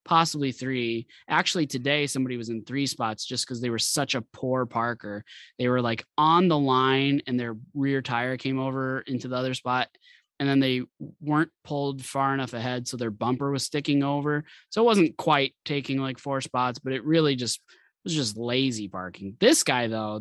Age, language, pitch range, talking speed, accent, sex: 20-39, English, 125-160 Hz, 195 wpm, American, male